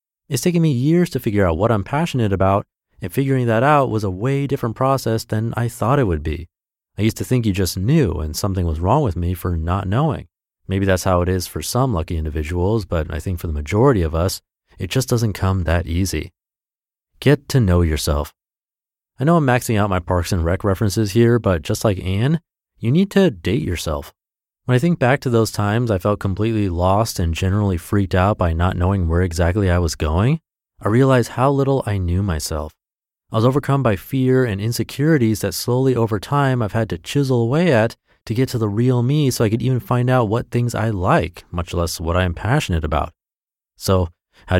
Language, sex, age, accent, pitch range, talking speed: English, male, 30-49, American, 90-125 Hz, 215 wpm